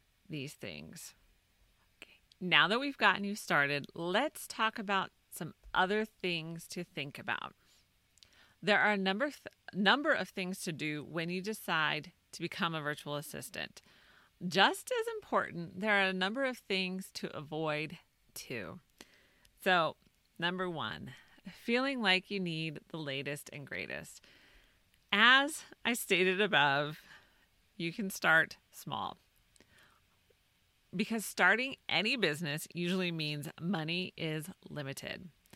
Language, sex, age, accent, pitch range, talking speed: English, female, 40-59, American, 160-205 Hz, 125 wpm